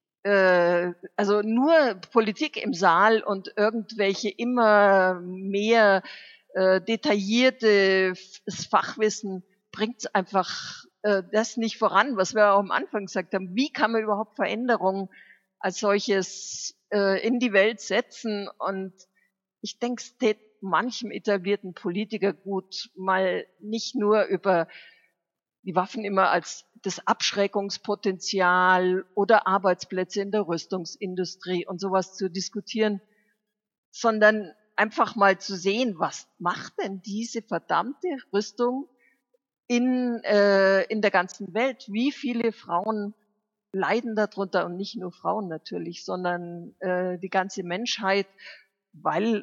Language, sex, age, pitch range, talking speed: German, female, 50-69, 190-220 Hz, 115 wpm